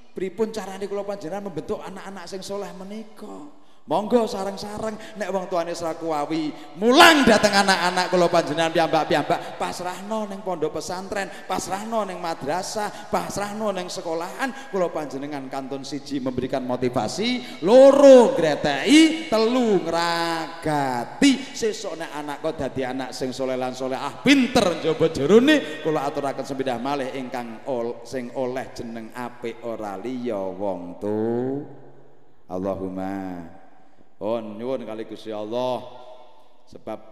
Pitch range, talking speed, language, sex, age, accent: 125-175 Hz, 120 wpm, Indonesian, male, 30-49, native